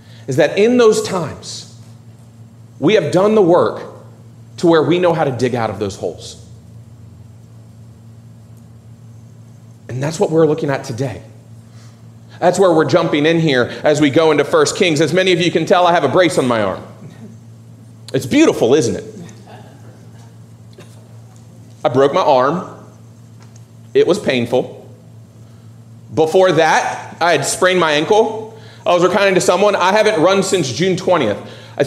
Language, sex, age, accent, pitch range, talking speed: English, male, 40-59, American, 115-185 Hz, 155 wpm